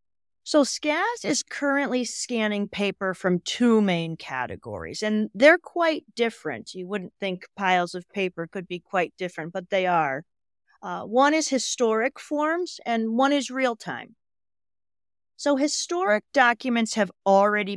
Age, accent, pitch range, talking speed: 40-59, American, 170-255 Hz, 140 wpm